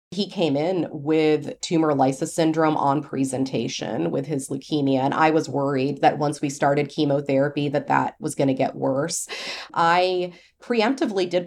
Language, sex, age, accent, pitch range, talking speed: English, female, 30-49, American, 140-160 Hz, 160 wpm